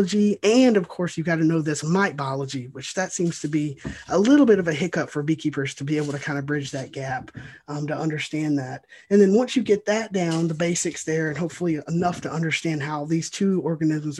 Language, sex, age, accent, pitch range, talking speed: English, male, 20-39, American, 150-185 Hz, 235 wpm